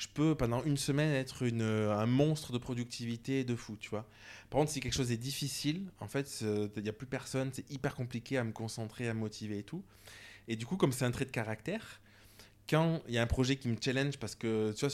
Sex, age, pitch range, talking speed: male, 20-39, 110-140 Hz, 255 wpm